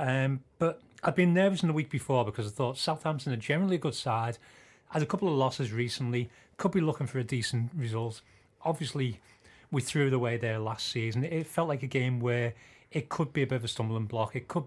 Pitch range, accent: 120-155 Hz, British